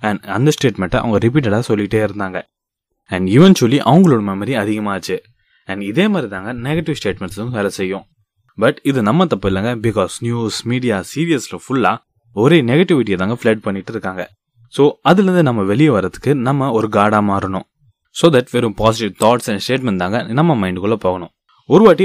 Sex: male